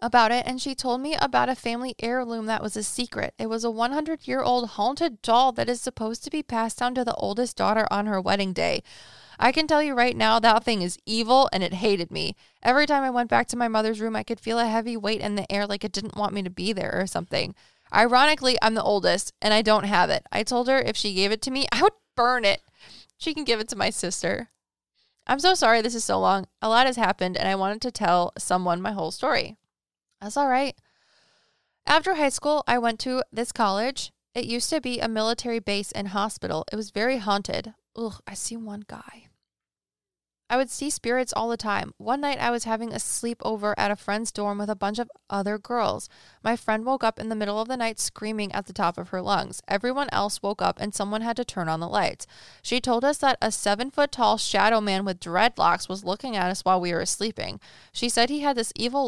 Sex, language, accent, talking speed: female, English, American, 240 wpm